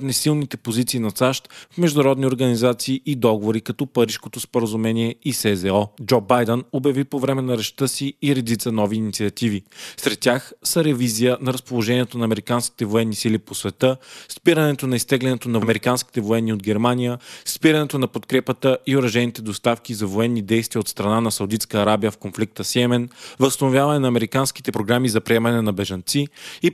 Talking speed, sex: 160 wpm, male